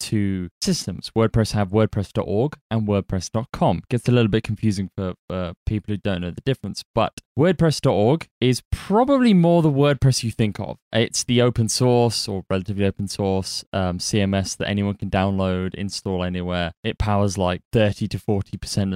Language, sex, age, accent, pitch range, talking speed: English, male, 20-39, British, 100-120 Hz, 165 wpm